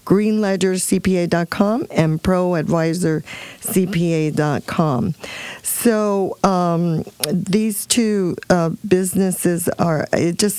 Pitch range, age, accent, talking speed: 155-185 Hz, 50-69, American, 70 wpm